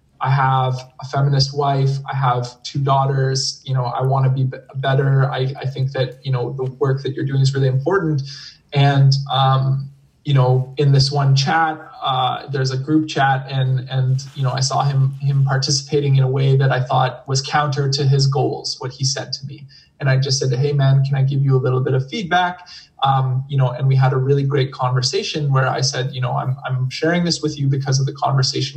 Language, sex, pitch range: English, male, 130-140 Hz